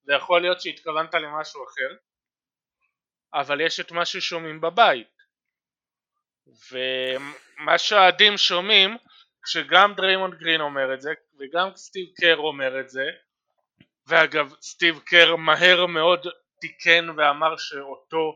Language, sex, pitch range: Hebrew, male, 150-185 Hz